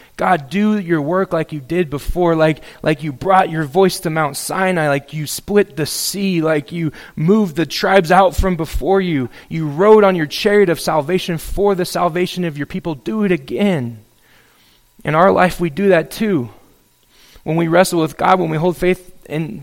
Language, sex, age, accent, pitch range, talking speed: English, male, 20-39, American, 145-185 Hz, 195 wpm